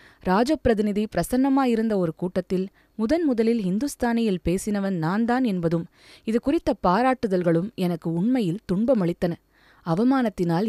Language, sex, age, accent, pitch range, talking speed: Tamil, female, 20-39, native, 175-250 Hz, 105 wpm